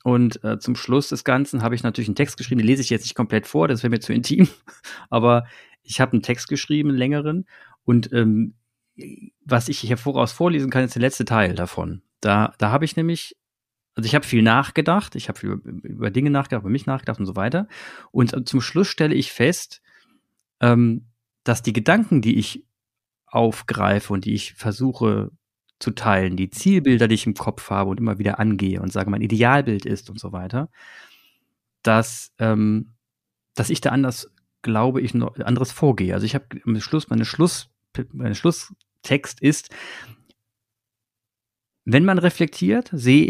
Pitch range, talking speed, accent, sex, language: 110-140 Hz, 180 wpm, German, male, German